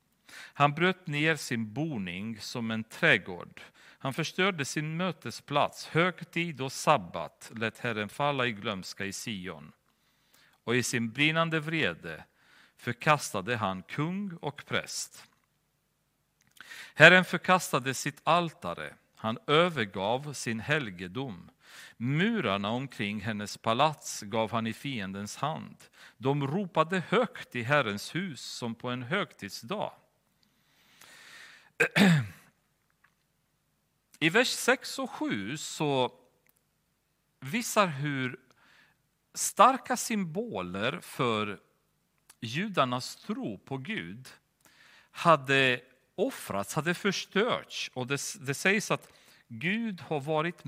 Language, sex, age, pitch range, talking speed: Swedish, male, 40-59, 120-185 Hz, 100 wpm